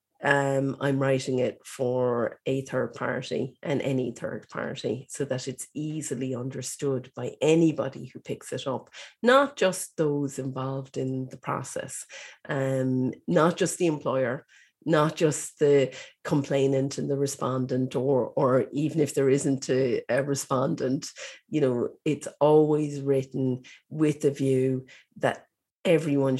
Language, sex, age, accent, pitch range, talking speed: English, female, 40-59, Irish, 130-150 Hz, 140 wpm